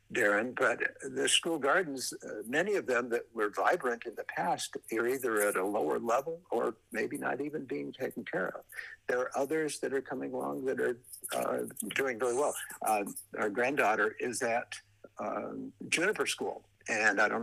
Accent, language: American, English